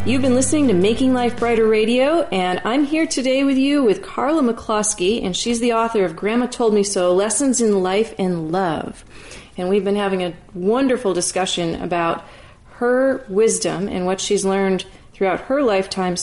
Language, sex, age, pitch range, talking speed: English, female, 30-49, 180-225 Hz, 180 wpm